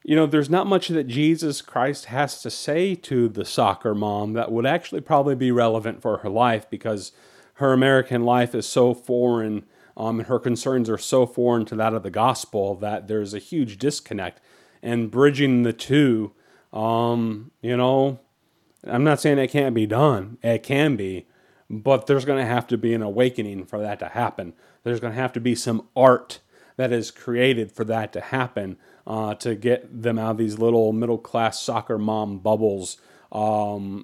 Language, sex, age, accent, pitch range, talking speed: English, male, 30-49, American, 110-135 Hz, 190 wpm